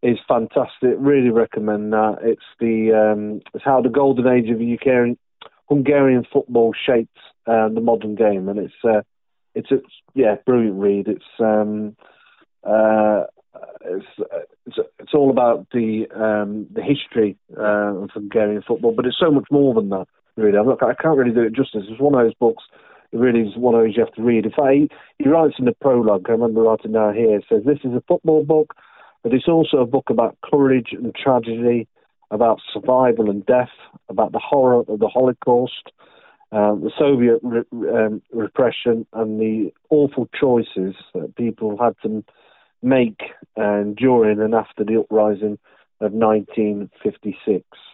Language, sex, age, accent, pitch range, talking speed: English, male, 40-59, British, 105-125 Hz, 170 wpm